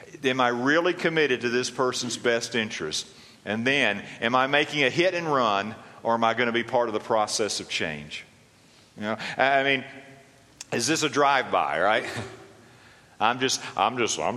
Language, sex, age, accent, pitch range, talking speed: English, male, 50-69, American, 80-125 Hz, 185 wpm